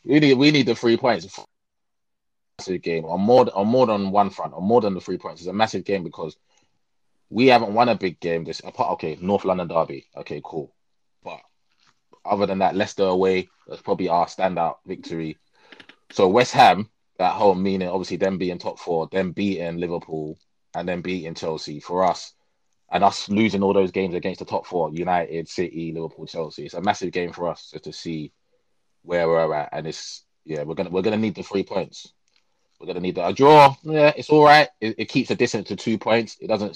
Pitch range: 85-115 Hz